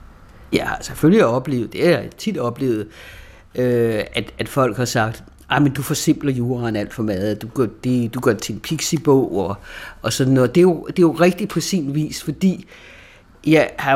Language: Danish